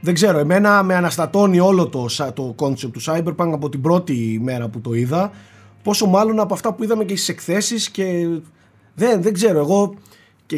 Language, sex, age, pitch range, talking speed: Greek, male, 30-49, 130-185 Hz, 185 wpm